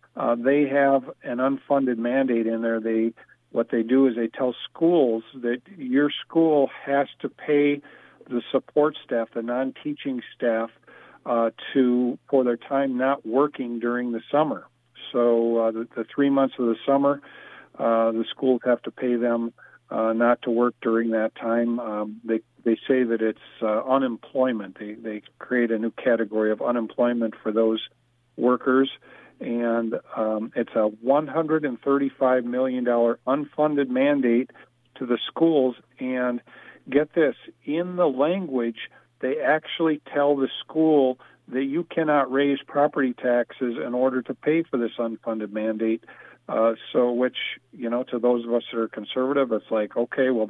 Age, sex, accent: 50-69, male, American